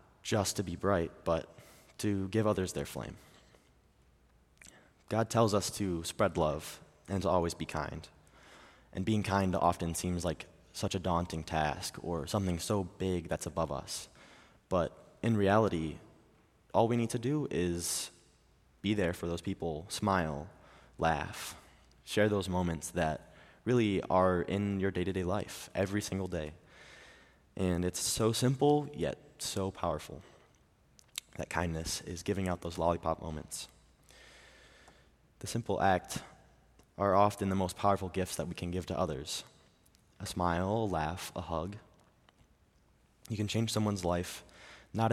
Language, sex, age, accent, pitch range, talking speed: English, male, 20-39, American, 85-105 Hz, 145 wpm